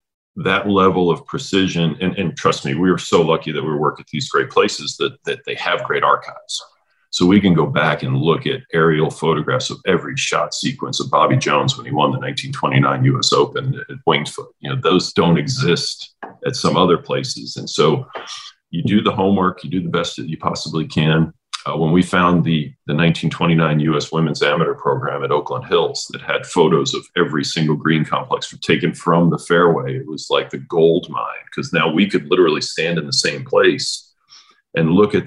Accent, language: American, English